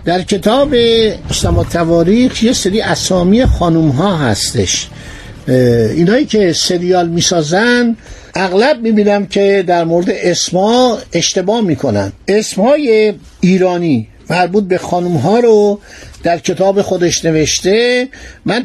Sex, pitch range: male, 165-200 Hz